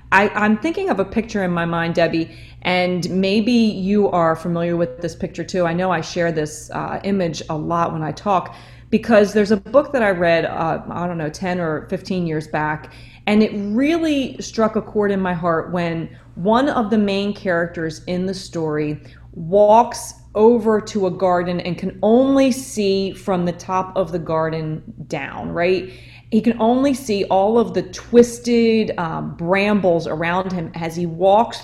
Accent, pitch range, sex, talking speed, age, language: American, 170-215 Hz, female, 180 wpm, 30-49, English